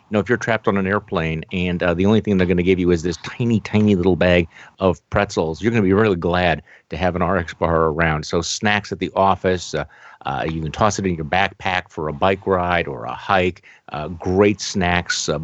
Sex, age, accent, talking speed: male, 50-69, American, 250 wpm